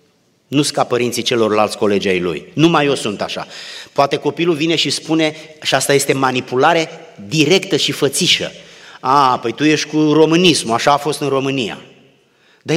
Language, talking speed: Romanian, 165 wpm